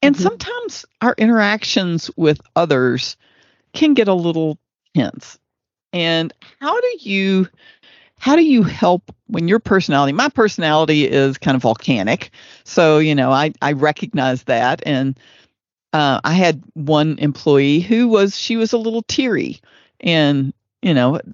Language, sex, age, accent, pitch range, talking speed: English, female, 50-69, American, 150-210 Hz, 145 wpm